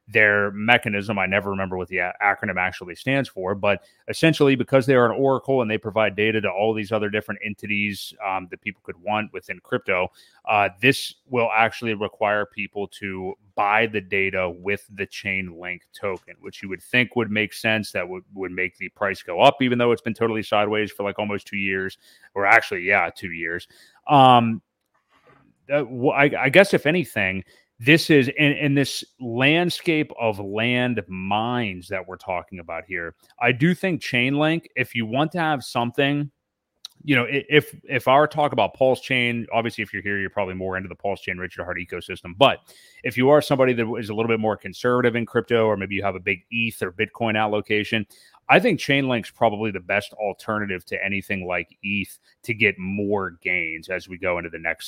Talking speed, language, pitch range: 200 wpm, English, 100-125 Hz